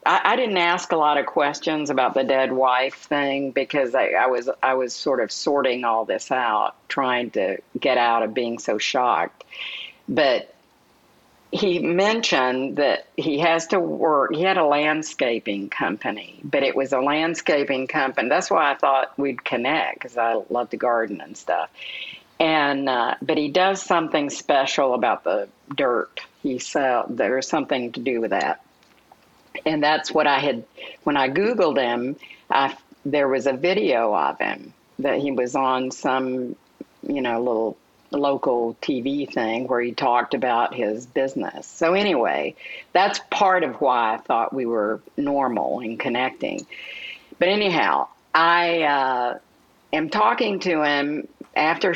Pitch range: 130-170 Hz